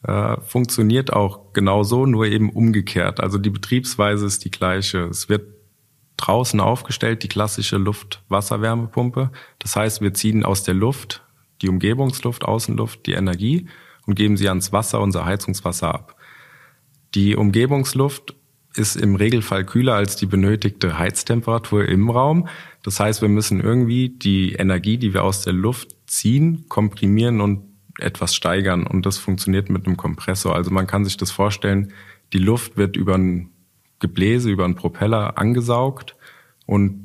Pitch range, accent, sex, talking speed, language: 95-115 Hz, German, male, 145 wpm, German